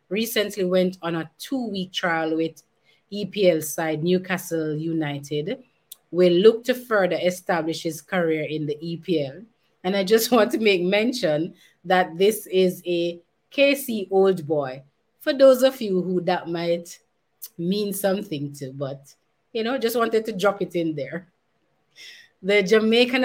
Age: 30-49